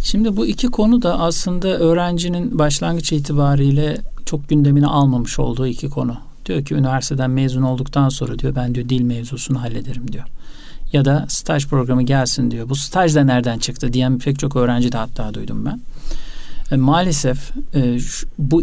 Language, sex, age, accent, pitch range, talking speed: Turkish, male, 50-69, native, 125-150 Hz, 160 wpm